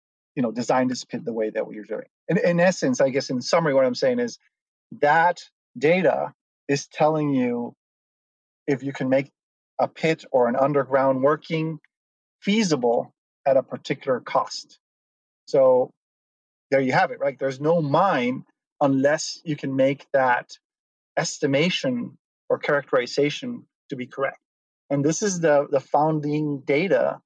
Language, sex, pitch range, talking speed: English, male, 130-170 Hz, 150 wpm